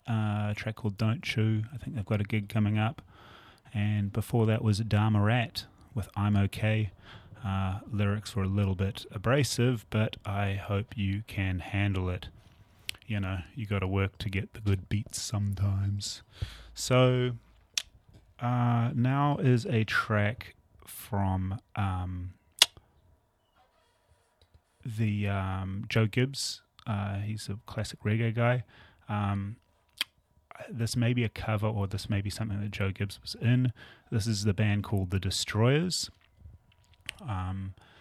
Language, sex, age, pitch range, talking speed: English, male, 30-49, 100-110 Hz, 145 wpm